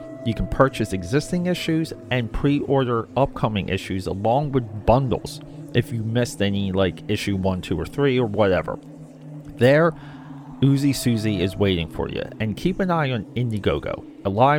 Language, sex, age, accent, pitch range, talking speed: English, male, 30-49, American, 105-145 Hz, 160 wpm